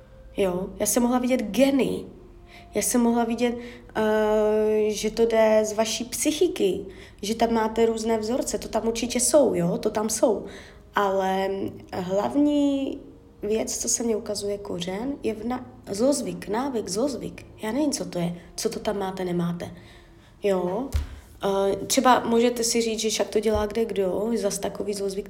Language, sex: Czech, female